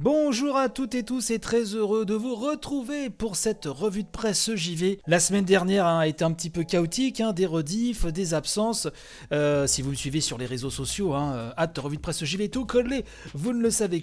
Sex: male